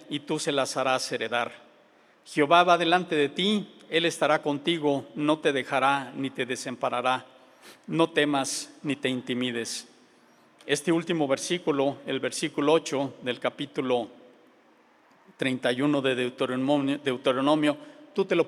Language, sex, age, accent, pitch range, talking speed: Spanish, male, 50-69, Mexican, 130-160 Hz, 125 wpm